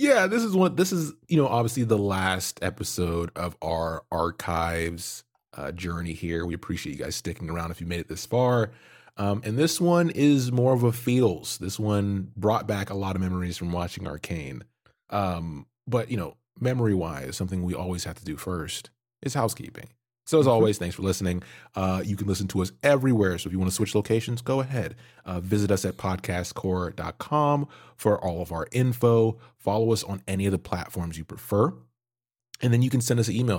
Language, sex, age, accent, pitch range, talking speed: English, male, 30-49, American, 90-120 Hz, 200 wpm